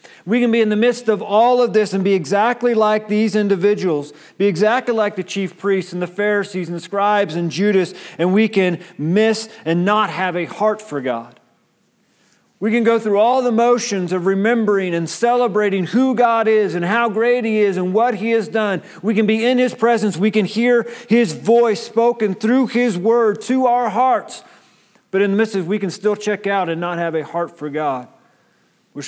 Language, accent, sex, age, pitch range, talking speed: English, American, male, 40-59, 140-215 Hz, 210 wpm